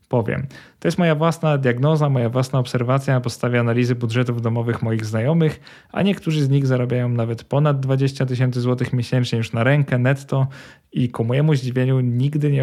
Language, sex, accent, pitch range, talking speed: Polish, male, native, 120-140 Hz, 175 wpm